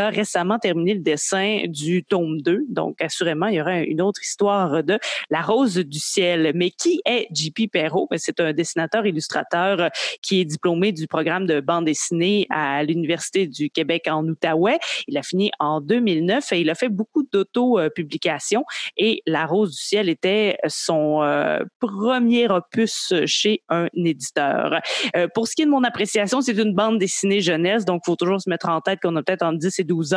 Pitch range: 165-210 Hz